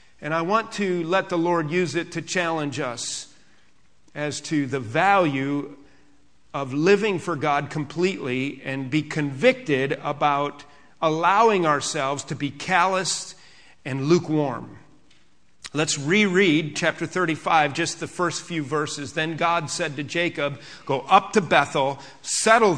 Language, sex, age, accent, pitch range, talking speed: English, male, 40-59, American, 145-190 Hz, 135 wpm